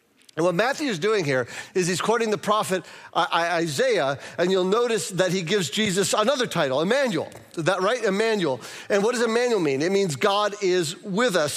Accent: American